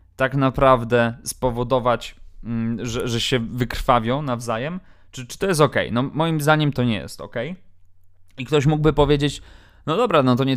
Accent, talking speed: native, 165 wpm